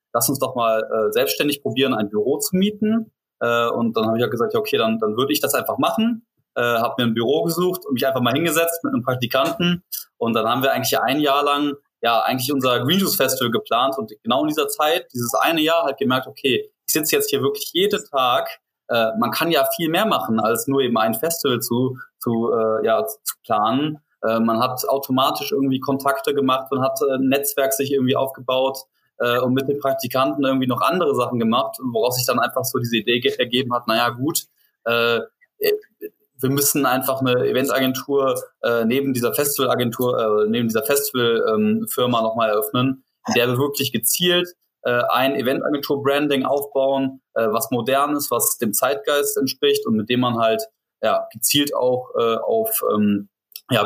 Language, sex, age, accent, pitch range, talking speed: German, male, 20-39, German, 120-160 Hz, 195 wpm